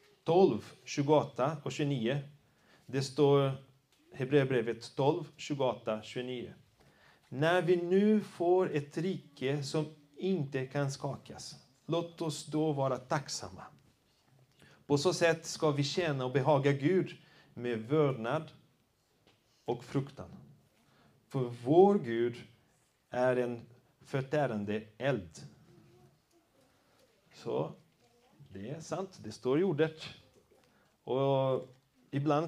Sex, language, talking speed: male, Swedish, 100 wpm